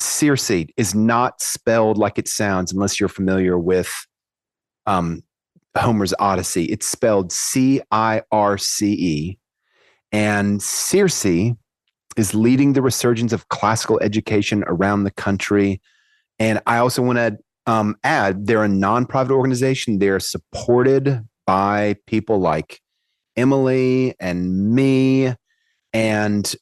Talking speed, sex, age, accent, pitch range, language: 120 wpm, male, 30-49, American, 100-125 Hz, English